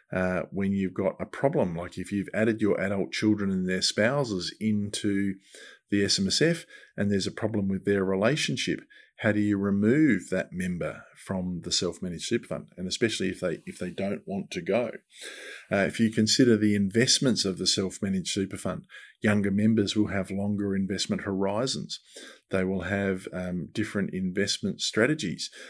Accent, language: Australian, English